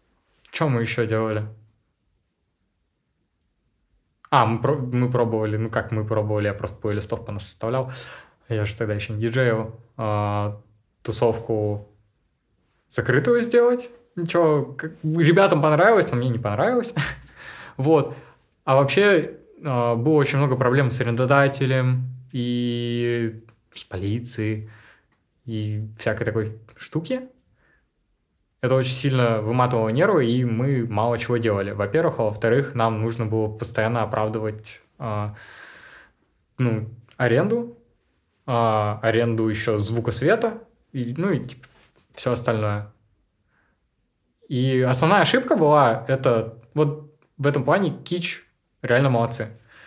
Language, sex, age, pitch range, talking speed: Russian, male, 20-39, 110-140 Hz, 115 wpm